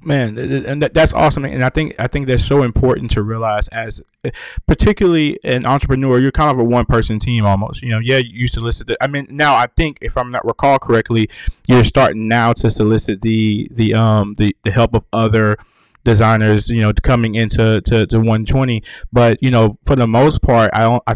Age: 20-39